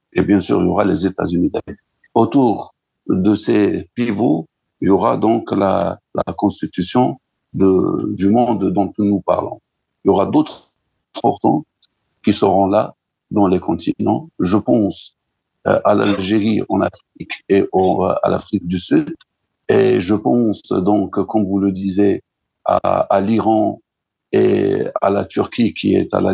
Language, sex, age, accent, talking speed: French, male, 60-79, French, 150 wpm